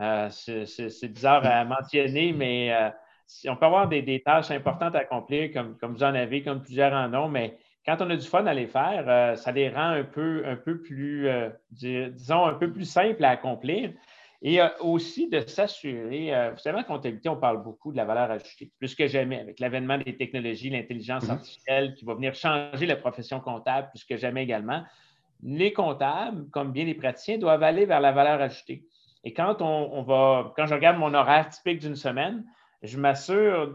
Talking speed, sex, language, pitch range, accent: 200 wpm, male, French, 130-170 Hz, Canadian